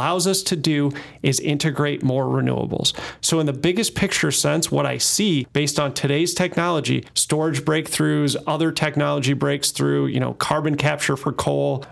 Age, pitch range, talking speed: 30-49, 140-165 Hz, 160 wpm